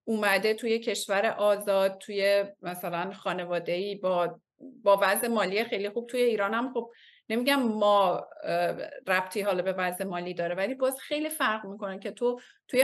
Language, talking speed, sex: Persian, 155 wpm, female